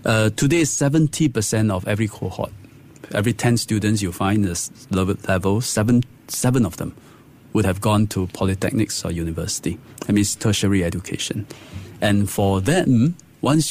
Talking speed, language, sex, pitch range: 150 wpm, English, male, 95-120 Hz